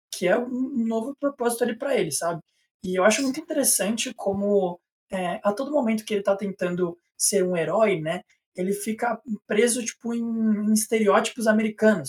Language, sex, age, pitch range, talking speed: Portuguese, male, 20-39, 190-235 Hz, 175 wpm